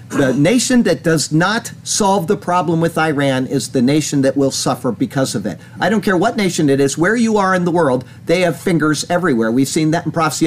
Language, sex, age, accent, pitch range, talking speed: English, male, 50-69, American, 140-185 Hz, 235 wpm